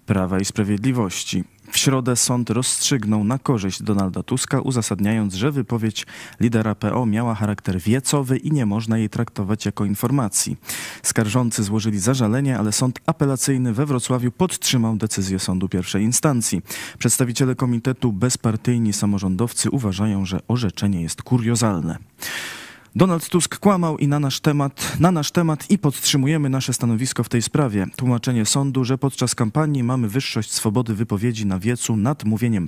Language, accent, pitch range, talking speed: Polish, native, 105-130 Hz, 145 wpm